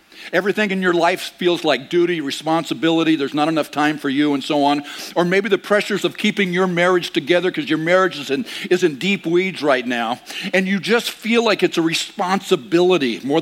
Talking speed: 200 wpm